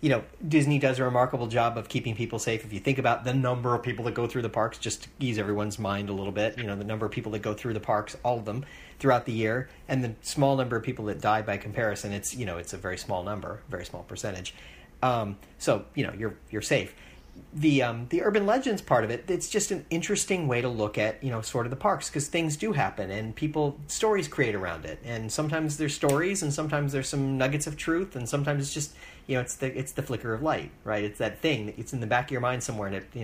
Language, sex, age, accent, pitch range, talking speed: English, male, 40-59, American, 110-145 Hz, 270 wpm